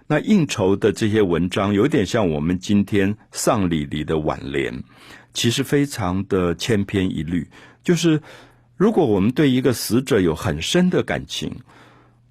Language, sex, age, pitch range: Chinese, male, 50-69, 90-130 Hz